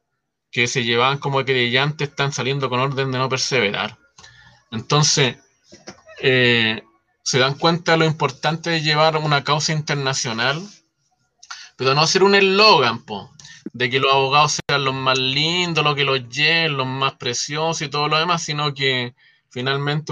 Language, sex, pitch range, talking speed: Spanish, male, 135-165 Hz, 155 wpm